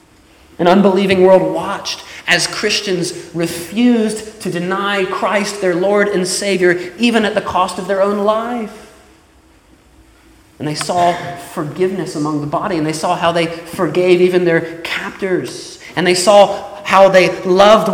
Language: English